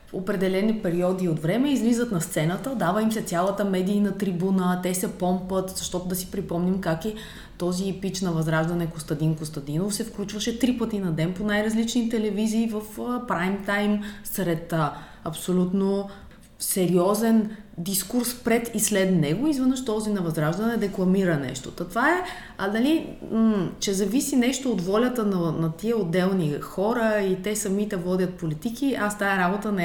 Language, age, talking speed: Bulgarian, 30-49, 165 wpm